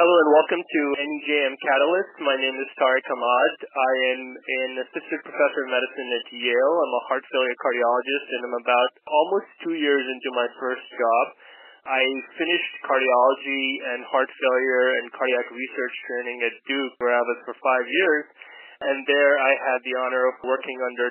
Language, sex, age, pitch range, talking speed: English, male, 20-39, 125-135 Hz, 170 wpm